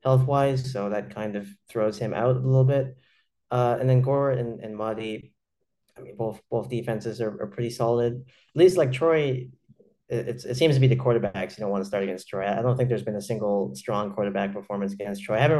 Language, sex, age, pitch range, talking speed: English, male, 30-49, 105-130 Hz, 230 wpm